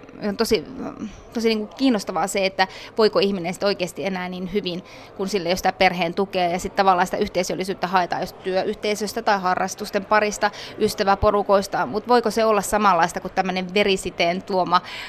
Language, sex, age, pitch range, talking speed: Finnish, female, 20-39, 185-215 Hz, 155 wpm